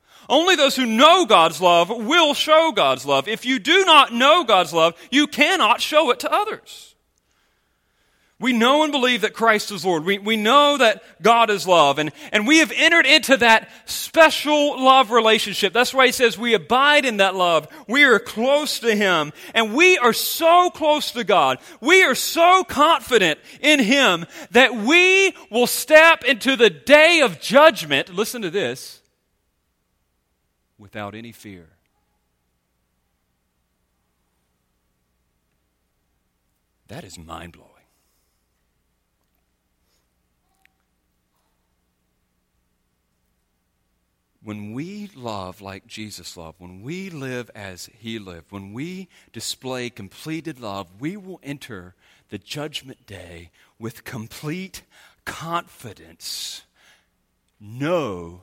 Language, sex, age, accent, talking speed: English, male, 30-49, American, 125 wpm